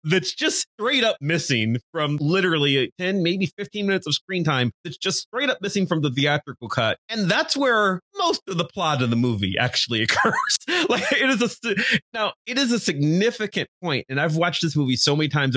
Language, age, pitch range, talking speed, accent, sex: English, 30-49, 115-165 Hz, 205 wpm, American, male